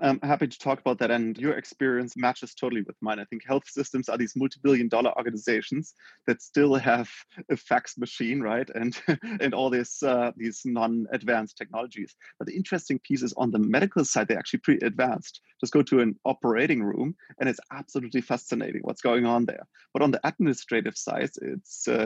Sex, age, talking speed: male, 30-49, 190 wpm